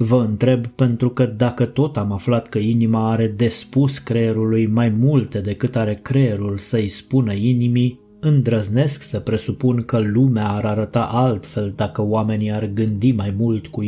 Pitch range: 110-125 Hz